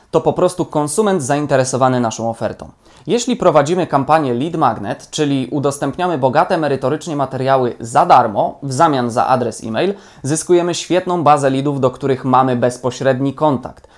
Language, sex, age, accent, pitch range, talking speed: Polish, male, 20-39, native, 130-170 Hz, 140 wpm